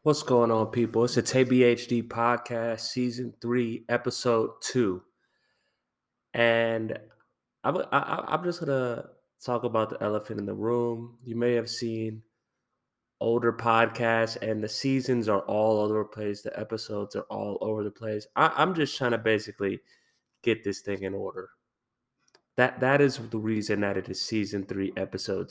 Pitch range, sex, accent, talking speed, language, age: 110-125 Hz, male, American, 155 wpm, English, 20-39